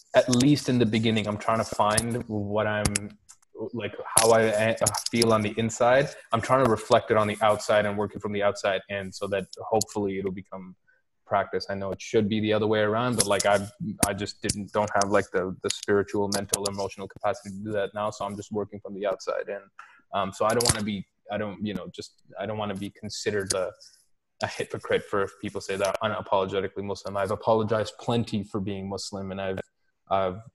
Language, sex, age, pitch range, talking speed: English, male, 20-39, 100-110 Hz, 220 wpm